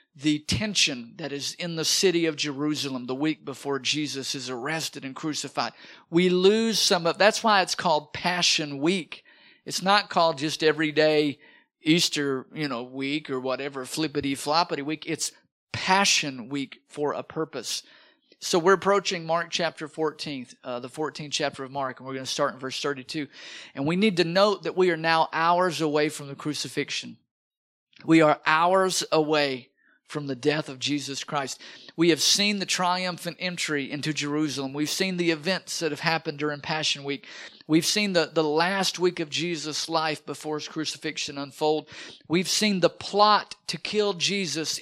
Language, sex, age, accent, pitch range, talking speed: English, male, 50-69, American, 145-180 Hz, 170 wpm